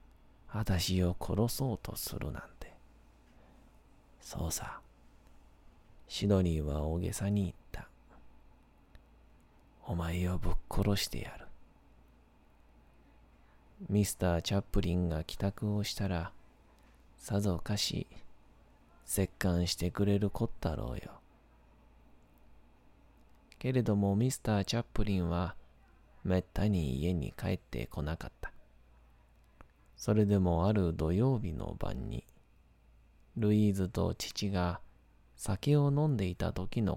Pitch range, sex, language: 70-100 Hz, male, Japanese